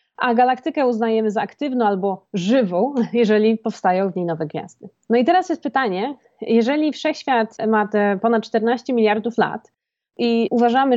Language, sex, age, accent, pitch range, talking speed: Polish, female, 20-39, native, 195-240 Hz, 155 wpm